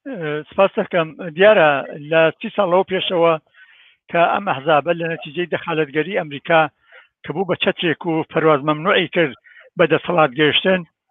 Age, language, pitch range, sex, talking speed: 60-79, Persian, 170-210 Hz, male, 130 wpm